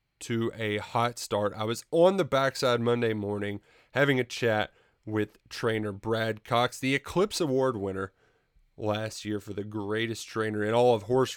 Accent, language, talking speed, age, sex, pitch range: American, English, 170 wpm, 20-39, male, 105-135 Hz